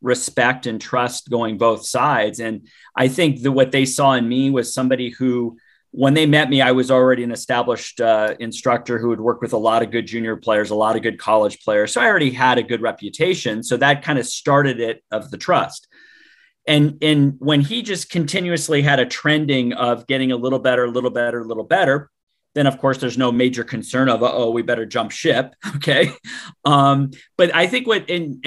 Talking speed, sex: 215 wpm, male